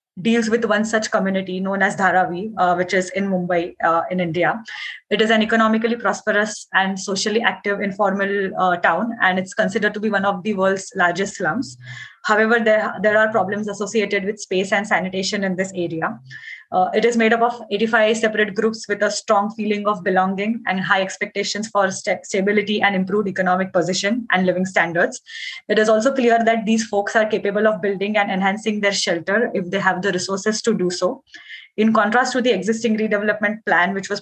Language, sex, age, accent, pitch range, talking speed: English, female, 20-39, Indian, 190-220 Hz, 195 wpm